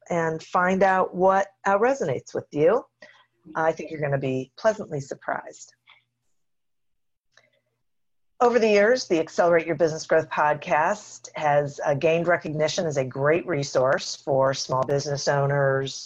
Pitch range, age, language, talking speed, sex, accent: 145-195 Hz, 50-69, English, 135 wpm, female, American